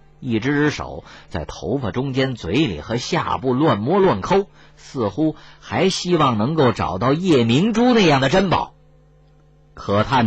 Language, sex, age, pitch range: Chinese, male, 50-69, 115-175 Hz